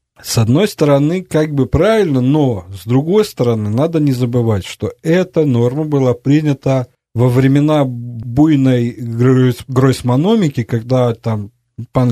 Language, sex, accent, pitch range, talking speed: Russian, male, native, 115-150 Hz, 125 wpm